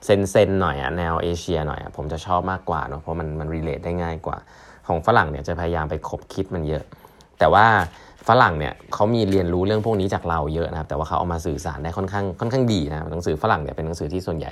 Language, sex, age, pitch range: Thai, male, 20-39, 80-100 Hz